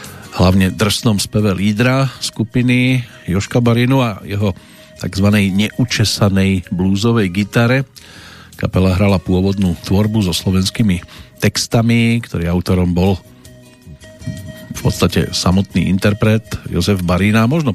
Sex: male